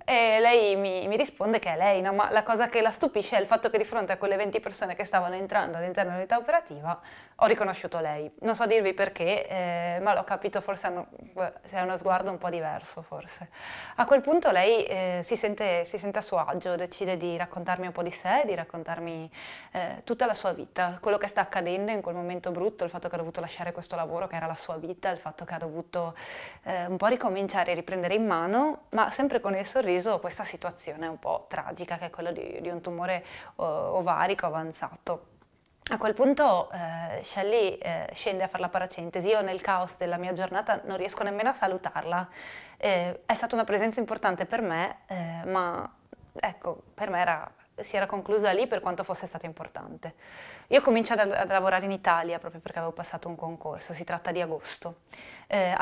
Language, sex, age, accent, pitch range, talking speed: Italian, female, 20-39, native, 175-210 Hz, 205 wpm